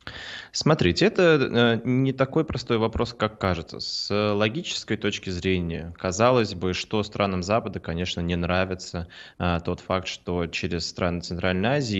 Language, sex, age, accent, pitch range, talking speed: Russian, male, 20-39, native, 90-105 Hz, 135 wpm